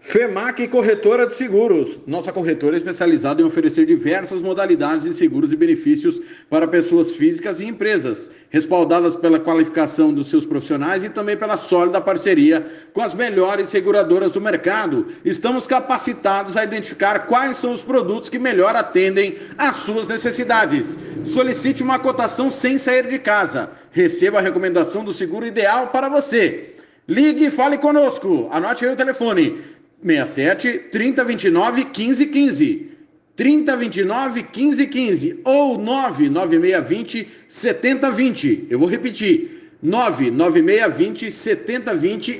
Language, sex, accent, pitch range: Portuguese, male, Brazilian, 220-325 Hz